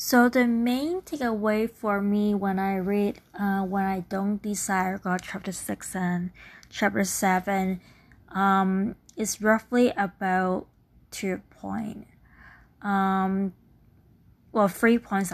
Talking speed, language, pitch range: 110 wpm, English, 185-205 Hz